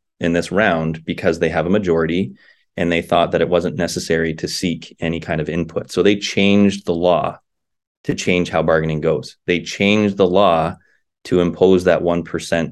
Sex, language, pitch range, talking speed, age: male, English, 85-100 Hz, 180 wpm, 30-49